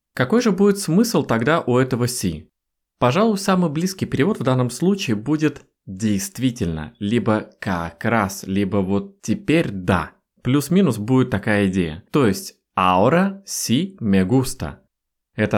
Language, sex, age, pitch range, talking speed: Russian, male, 20-39, 95-135 Hz, 140 wpm